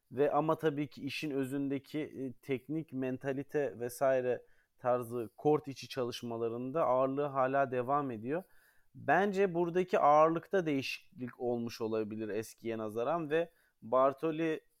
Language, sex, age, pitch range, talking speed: Turkish, male, 30-49, 115-145 Hz, 110 wpm